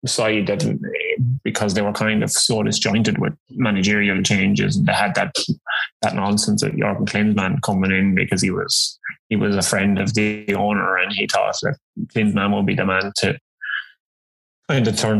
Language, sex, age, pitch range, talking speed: English, male, 20-39, 95-110 Hz, 180 wpm